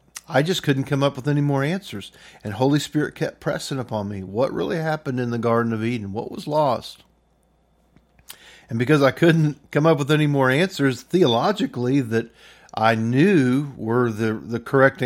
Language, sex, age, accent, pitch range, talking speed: English, male, 50-69, American, 105-135 Hz, 180 wpm